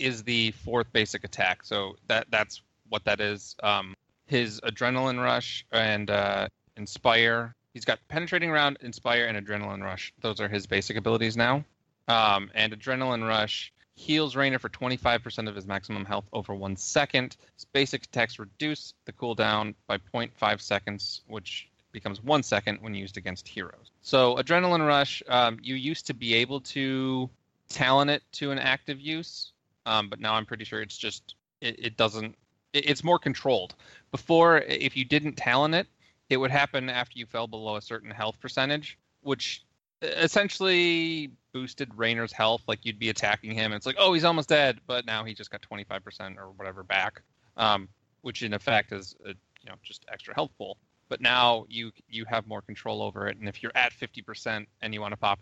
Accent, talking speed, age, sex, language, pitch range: American, 185 wpm, 20-39, male, English, 105-130 Hz